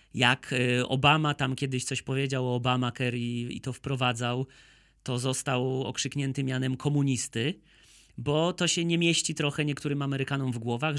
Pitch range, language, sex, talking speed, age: 130-160 Hz, Polish, male, 145 wpm, 30-49